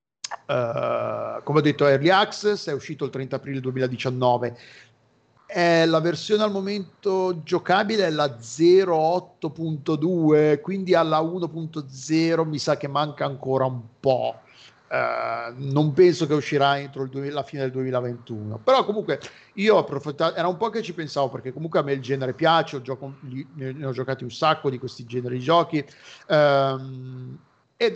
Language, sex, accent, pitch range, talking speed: Italian, male, native, 135-165 Hz, 165 wpm